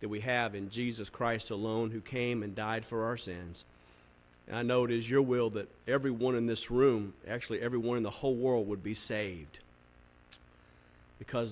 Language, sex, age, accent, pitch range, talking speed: English, male, 40-59, American, 105-125 Hz, 190 wpm